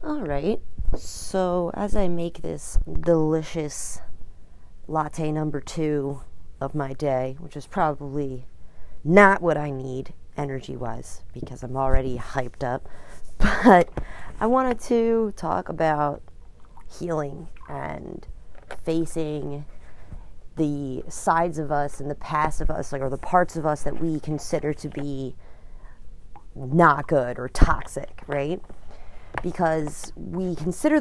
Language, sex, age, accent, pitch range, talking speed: English, female, 30-49, American, 135-170 Hz, 125 wpm